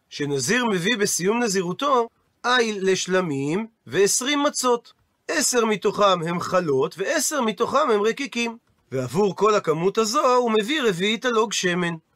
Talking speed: 125 wpm